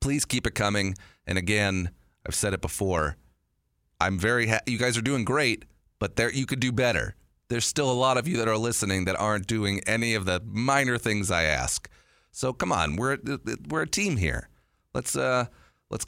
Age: 40-59